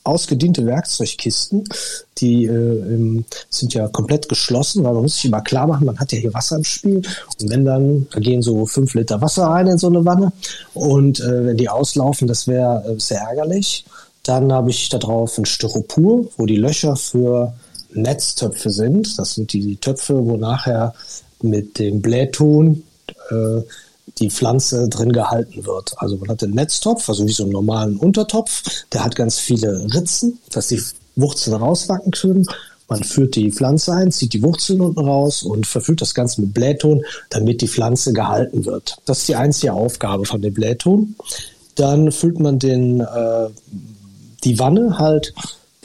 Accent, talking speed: German, 175 wpm